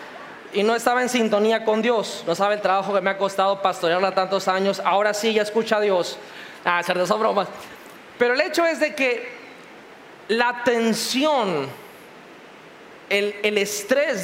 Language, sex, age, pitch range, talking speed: Spanish, male, 30-49, 195-260 Hz, 175 wpm